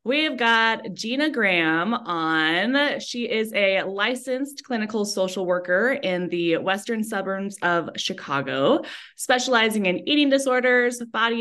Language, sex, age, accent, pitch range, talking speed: English, female, 20-39, American, 175-230 Hz, 120 wpm